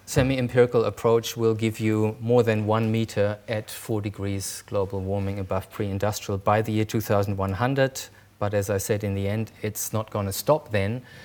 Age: 30-49